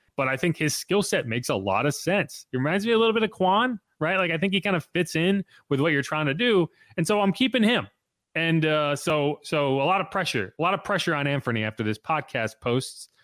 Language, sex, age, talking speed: English, male, 30-49, 260 wpm